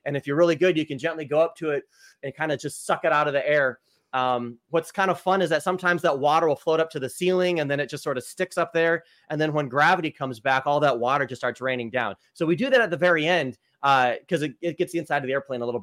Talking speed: 305 wpm